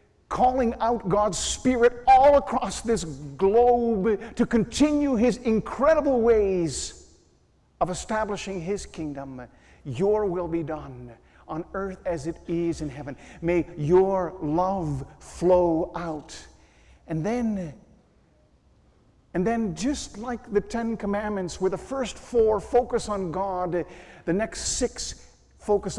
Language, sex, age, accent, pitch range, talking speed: English, male, 50-69, American, 160-230 Hz, 120 wpm